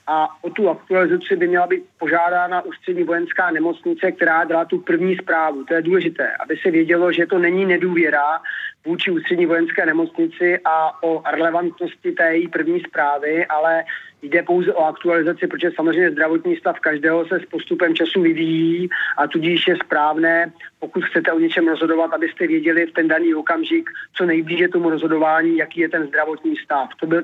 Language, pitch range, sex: Czech, 165-185 Hz, male